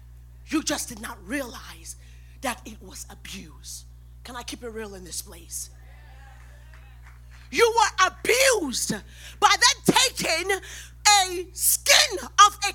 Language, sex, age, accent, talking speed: English, female, 40-59, American, 125 wpm